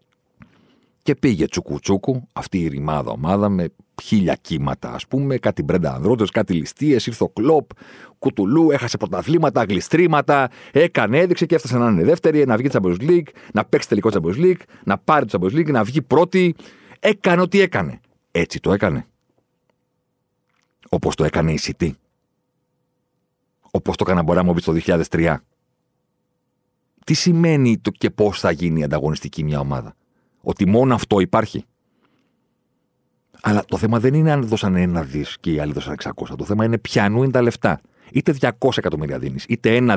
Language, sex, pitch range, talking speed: Greek, male, 90-145 Hz, 160 wpm